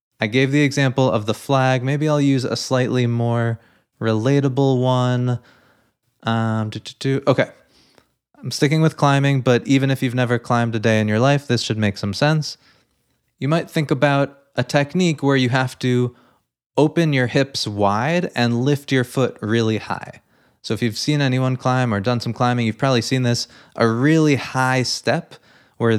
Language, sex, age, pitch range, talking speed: English, male, 20-39, 110-140 Hz, 180 wpm